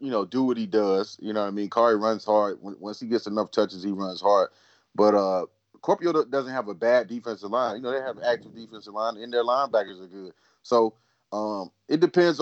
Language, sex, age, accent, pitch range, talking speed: English, male, 30-49, American, 105-125 Hz, 225 wpm